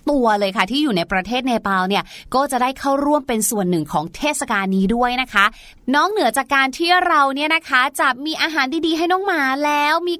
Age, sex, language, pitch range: 30-49, female, Thai, 235-315 Hz